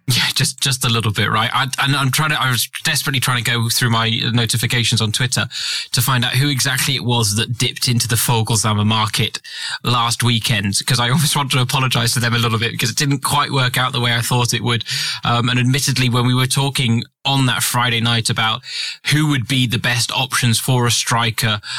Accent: British